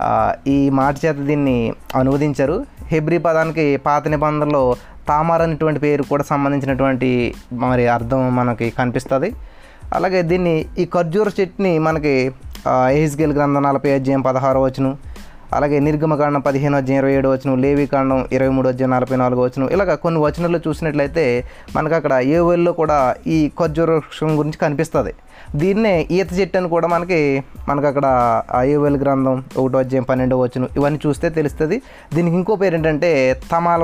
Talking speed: 145 wpm